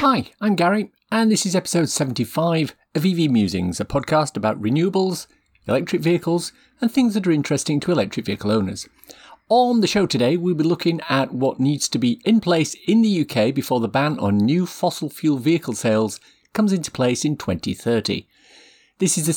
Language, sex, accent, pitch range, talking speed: English, male, British, 115-170 Hz, 185 wpm